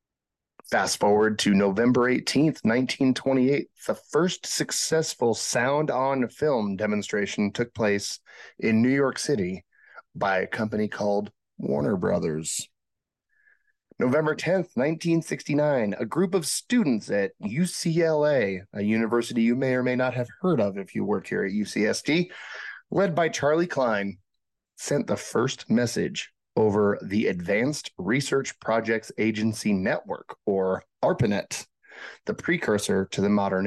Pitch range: 105-145 Hz